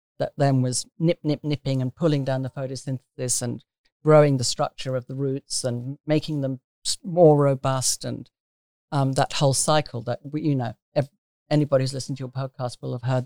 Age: 50-69